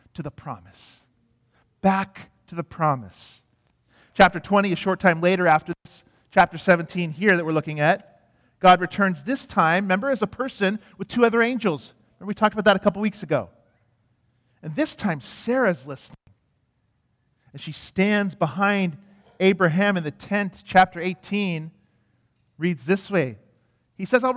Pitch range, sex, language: 135-205 Hz, male, English